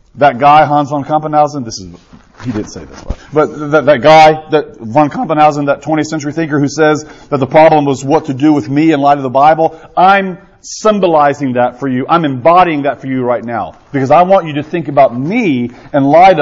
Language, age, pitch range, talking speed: English, 40-59, 145-180 Hz, 220 wpm